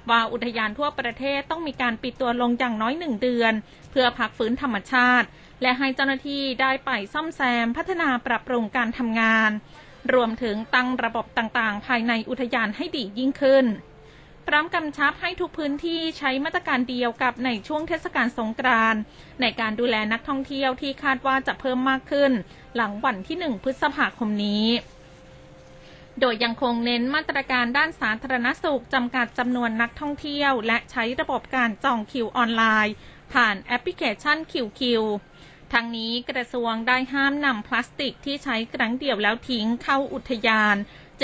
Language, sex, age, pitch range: Thai, female, 20-39, 225-275 Hz